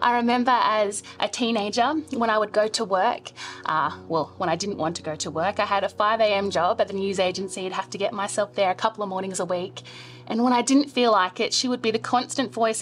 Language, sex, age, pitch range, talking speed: English, female, 20-39, 190-250 Hz, 260 wpm